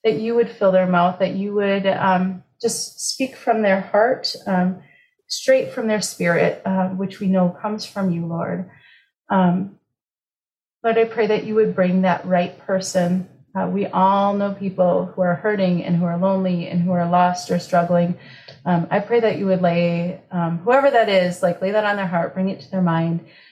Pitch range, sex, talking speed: 180-210 Hz, female, 200 wpm